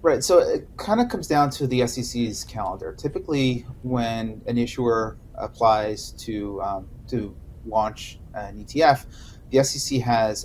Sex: male